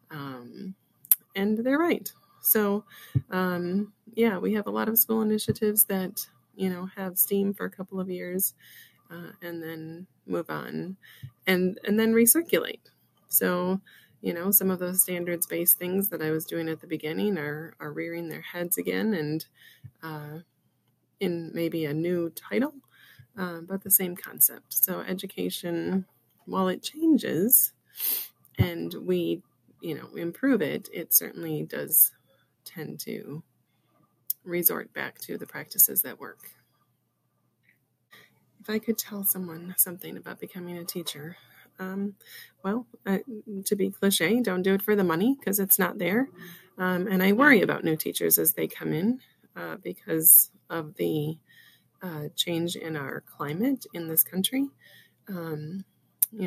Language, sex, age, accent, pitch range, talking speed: English, female, 20-39, American, 165-205 Hz, 150 wpm